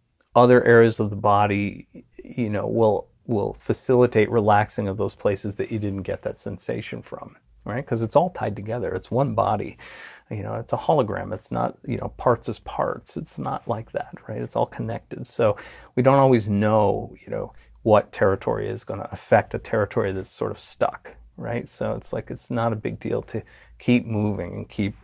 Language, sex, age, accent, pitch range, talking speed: English, male, 40-59, American, 100-120 Hz, 200 wpm